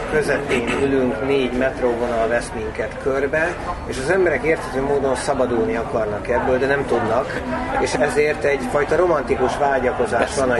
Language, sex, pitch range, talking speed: Hungarian, male, 120-135 Hz, 140 wpm